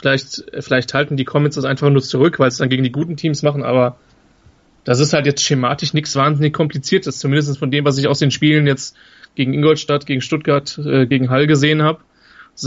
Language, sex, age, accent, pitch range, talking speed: German, male, 30-49, German, 130-150 Hz, 215 wpm